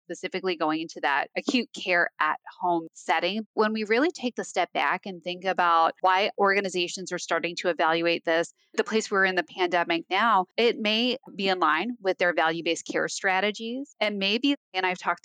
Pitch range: 175-205 Hz